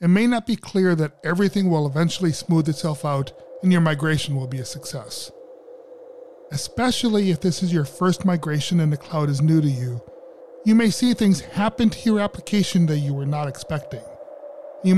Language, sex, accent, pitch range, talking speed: English, male, American, 140-200 Hz, 190 wpm